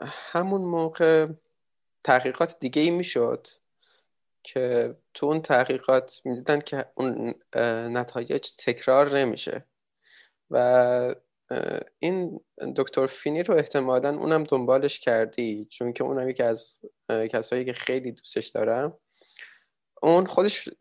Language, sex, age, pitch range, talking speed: Persian, male, 20-39, 125-175 Hz, 110 wpm